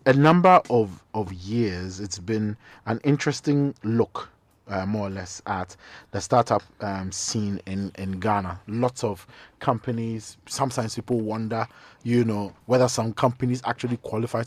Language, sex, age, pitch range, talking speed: English, male, 30-49, 100-125 Hz, 145 wpm